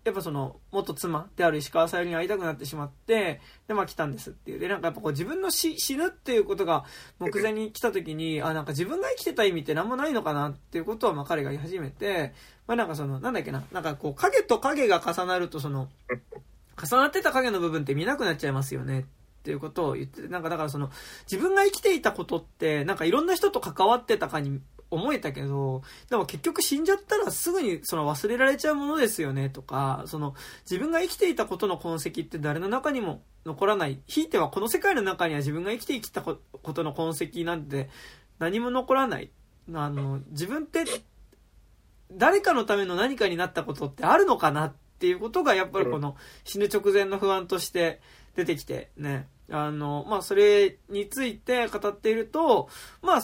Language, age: Japanese, 20-39